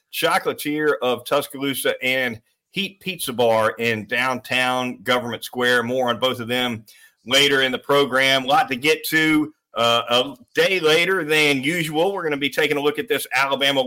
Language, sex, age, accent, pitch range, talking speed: English, male, 40-59, American, 130-155 Hz, 175 wpm